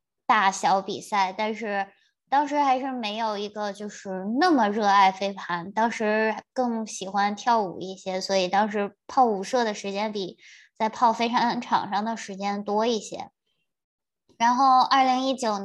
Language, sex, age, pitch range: Chinese, male, 20-39, 200-235 Hz